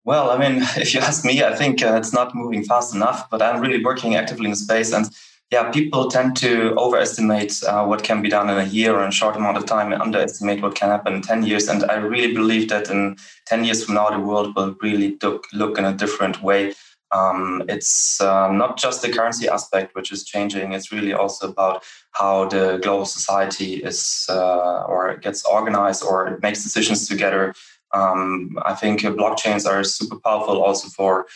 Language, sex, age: English, male, 20-39